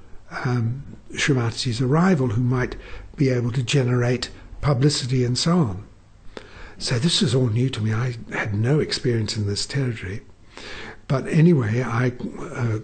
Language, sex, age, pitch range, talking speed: English, male, 60-79, 110-130 Hz, 145 wpm